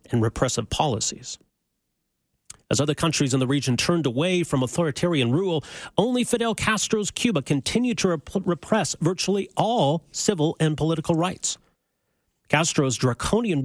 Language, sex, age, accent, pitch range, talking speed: English, male, 40-59, American, 130-175 Hz, 130 wpm